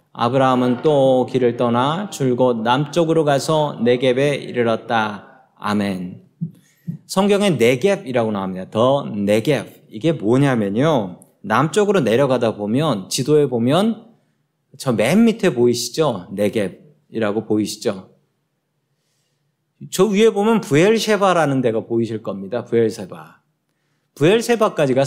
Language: Korean